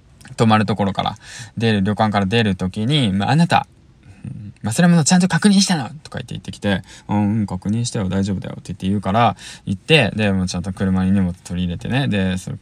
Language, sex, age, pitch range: Japanese, male, 20-39, 95-115 Hz